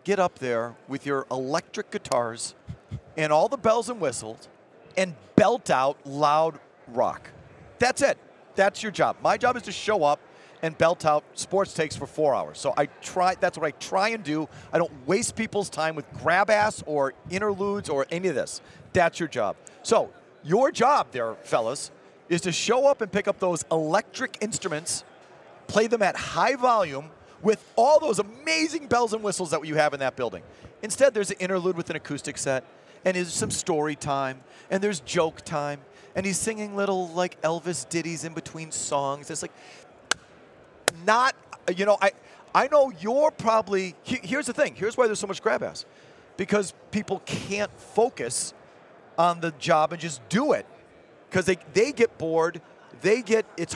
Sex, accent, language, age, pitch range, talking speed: male, American, English, 40-59, 155-210 Hz, 180 wpm